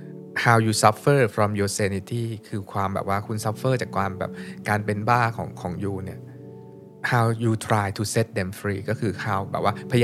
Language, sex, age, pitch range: Thai, male, 20-39, 105-135 Hz